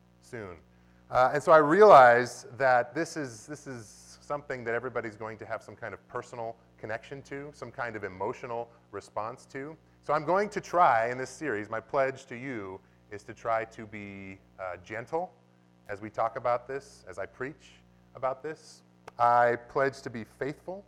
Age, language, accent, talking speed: 30-49, English, American, 180 wpm